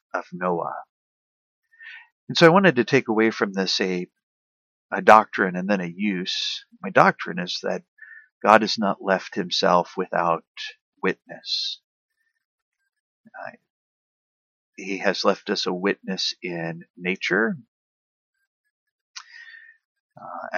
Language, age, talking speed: English, 50-69, 110 wpm